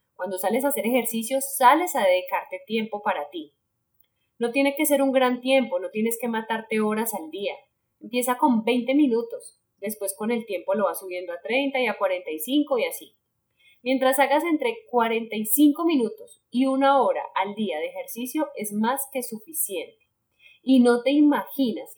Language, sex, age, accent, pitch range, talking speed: Spanish, female, 10-29, Colombian, 205-285 Hz, 170 wpm